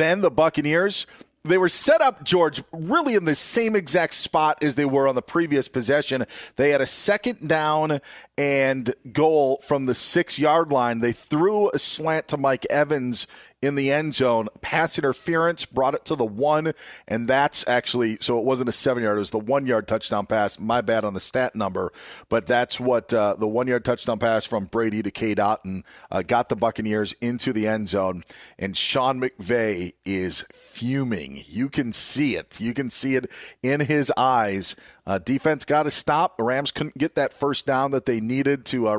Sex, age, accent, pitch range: male, 40-59, American, 110-145 Hz